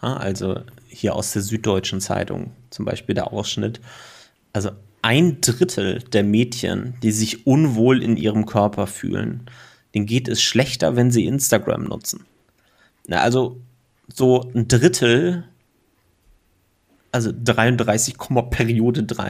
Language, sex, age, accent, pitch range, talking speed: German, male, 30-49, German, 105-125 Hz, 110 wpm